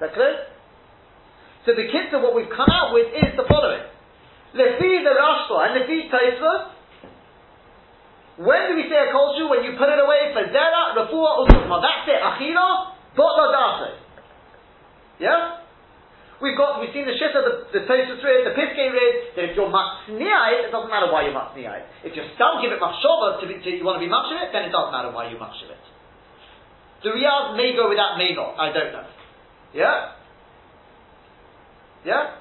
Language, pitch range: English, 225-335 Hz